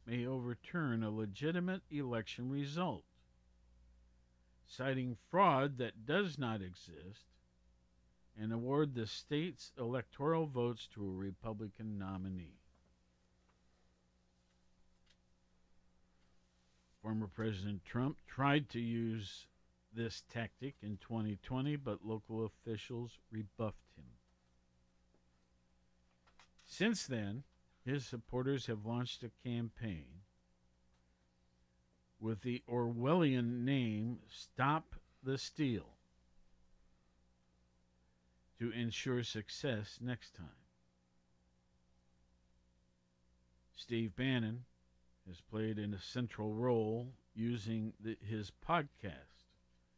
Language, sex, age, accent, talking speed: English, male, 50-69, American, 85 wpm